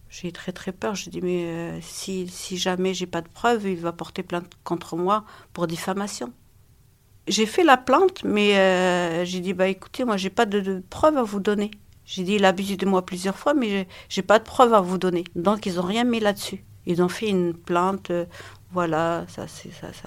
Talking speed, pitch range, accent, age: 235 wpm, 180-215 Hz, French, 50-69